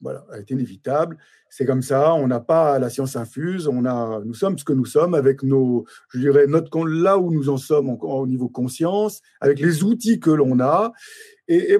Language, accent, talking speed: French, French, 220 wpm